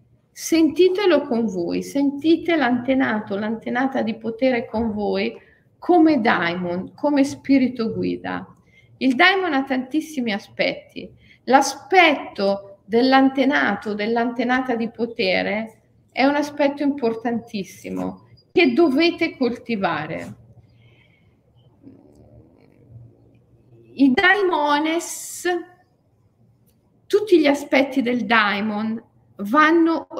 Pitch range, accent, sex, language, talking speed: 200-275 Hz, native, female, Italian, 80 wpm